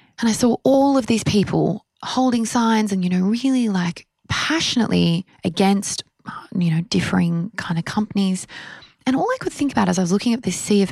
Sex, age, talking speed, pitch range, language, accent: female, 20-39, 200 wpm, 175-230 Hz, English, Australian